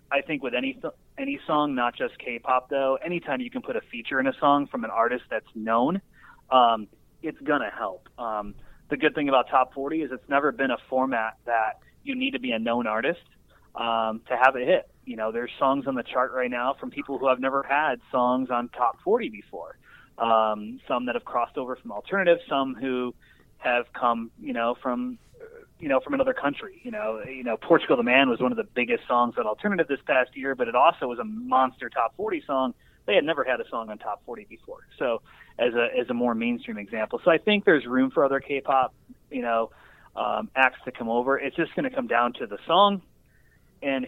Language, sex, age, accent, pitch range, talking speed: English, male, 30-49, American, 120-200 Hz, 225 wpm